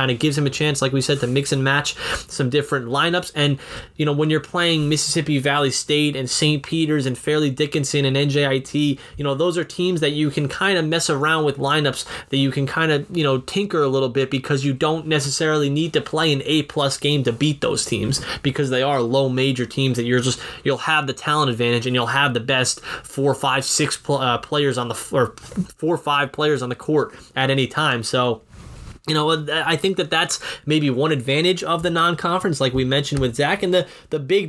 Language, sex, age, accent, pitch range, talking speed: English, male, 20-39, American, 135-155 Hz, 230 wpm